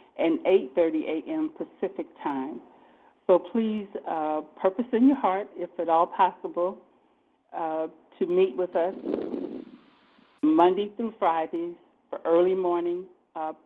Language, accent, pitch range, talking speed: English, American, 160-220 Hz, 125 wpm